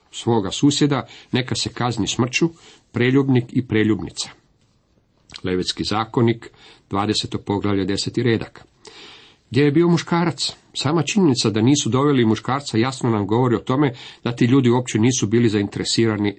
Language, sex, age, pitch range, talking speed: Croatian, male, 50-69, 105-140 Hz, 135 wpm